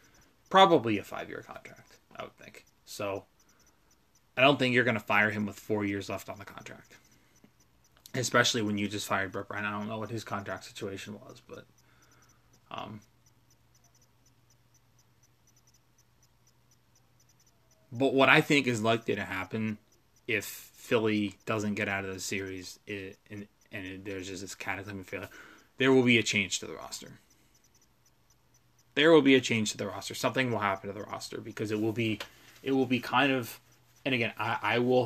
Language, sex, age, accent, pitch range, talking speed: English, male, 20-39, American, 105-125 Hz, 170 wpm